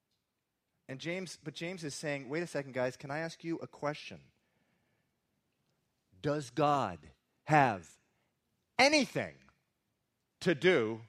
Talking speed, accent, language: 120 wpm, American, English